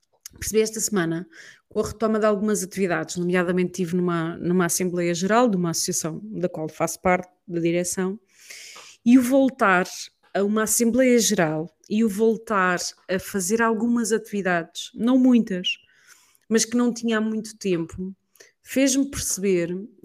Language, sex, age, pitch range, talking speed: Portuguese, female, 30-49, 180-230 Hz, 145 wpm